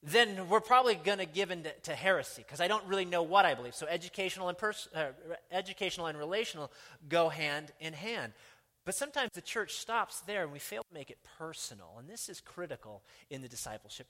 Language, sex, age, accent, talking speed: English, male, 30-49, American, 215 wpm